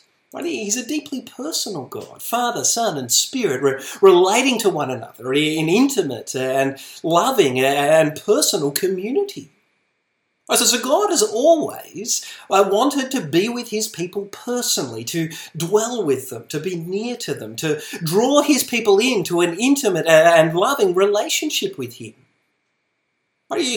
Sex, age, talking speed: male, 30-49, 135 wpm